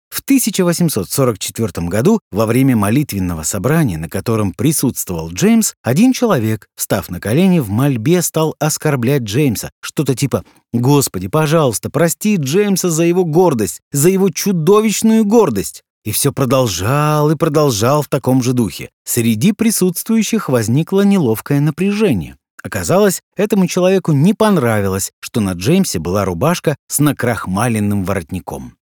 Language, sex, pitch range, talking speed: Russian, male, 120-190 Hz, 125 wpm